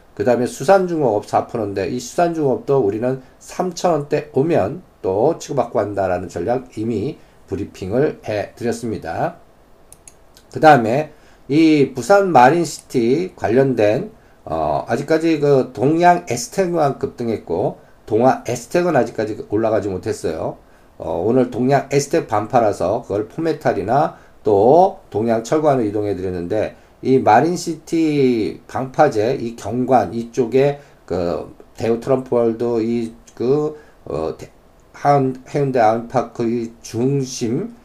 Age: 50-69